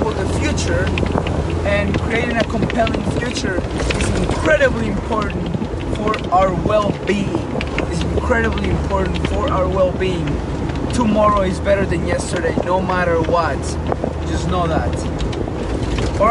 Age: 20-39